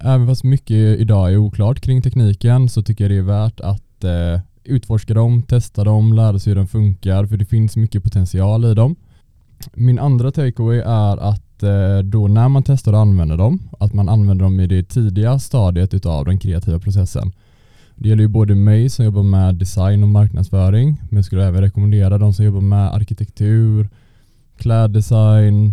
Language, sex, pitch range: Swedish, male, 100-115 Hz